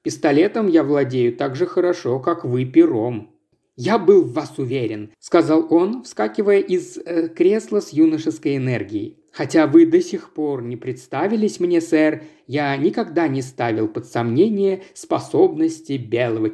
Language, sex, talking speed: Russian, male, 145 wpm